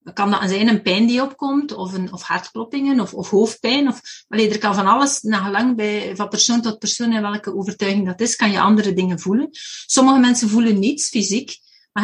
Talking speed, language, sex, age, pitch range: 215 wpm, Dutch, female, 40-59, 200-250 Hz